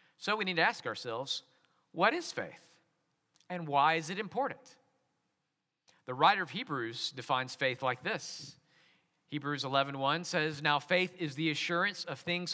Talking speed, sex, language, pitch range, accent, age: 155 wpm, male, English, 140-175 Hz, American, 50-69